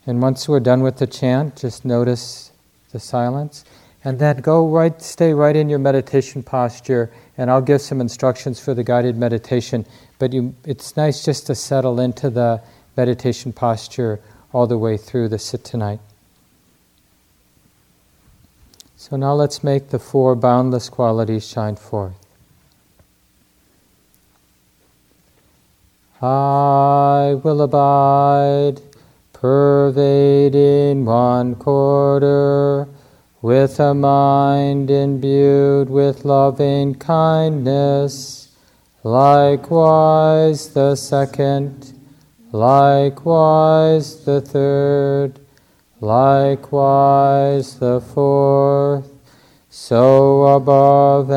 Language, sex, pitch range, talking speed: English, male, 125-140 Hz, 95 wpm